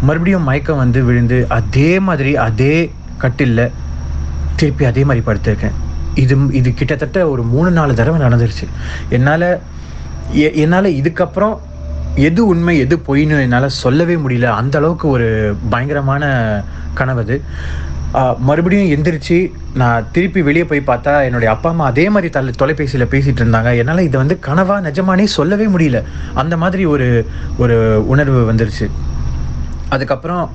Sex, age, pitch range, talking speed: male, 30-49, 95-140 Hz, 130 wpm